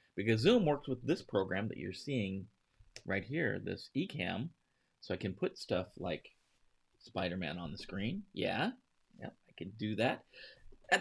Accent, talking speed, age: American, 165 wpm, 30-49